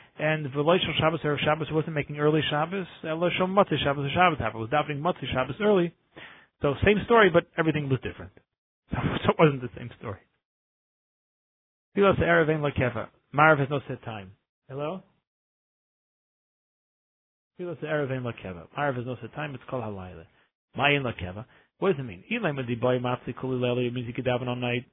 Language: English